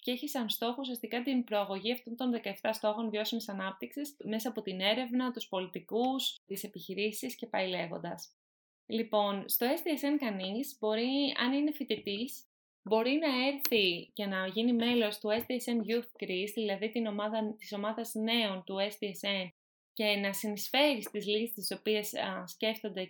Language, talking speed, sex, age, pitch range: Greek, 150 wpm, female, 20-39, 200-245 Hz